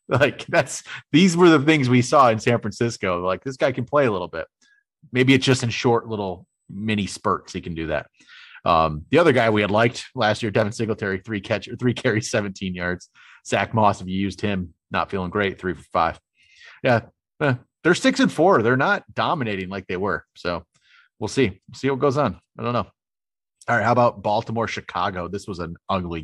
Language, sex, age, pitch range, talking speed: English, male, 30-49, 95-120 Hz, 215 wpm